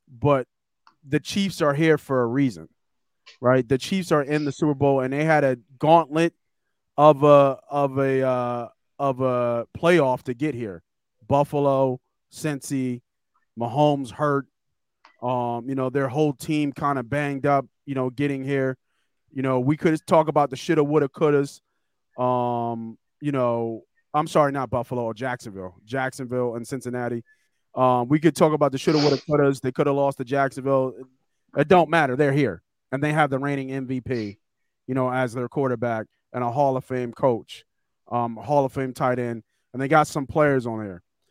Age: 30-49